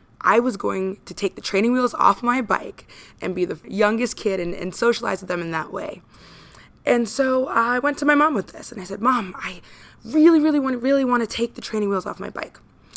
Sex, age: female, 20-39